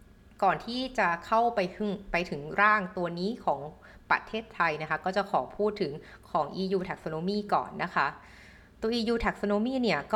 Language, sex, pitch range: Thai, female, 160-205 Hz